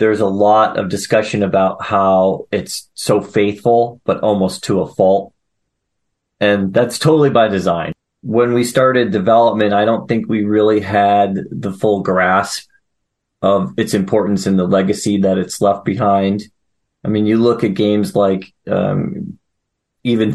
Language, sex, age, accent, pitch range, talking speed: English, male, 30-49, American, 100-110 Hz, 155 wpm